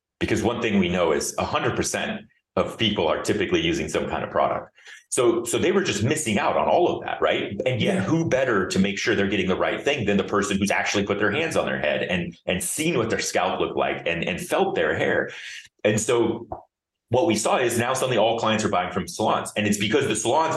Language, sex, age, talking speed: English, male, 30-49, 240 wpm